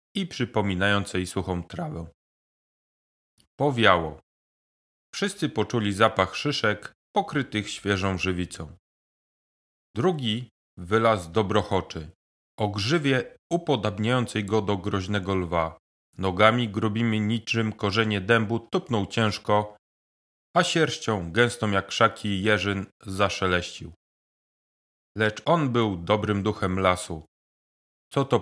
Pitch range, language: 90-115 Hz, Polish